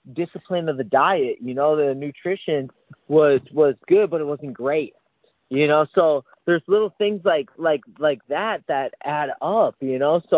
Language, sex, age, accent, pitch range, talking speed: English, male, 30-49, American, 140-170 Hz, 180 wpm